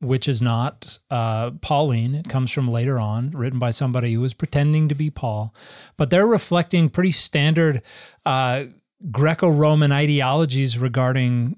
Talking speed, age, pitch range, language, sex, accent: 145 wpm, 30-49, 125-155 Hz, English, male, American